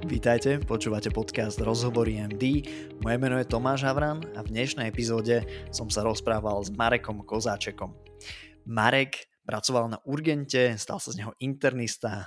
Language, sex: Slovak, male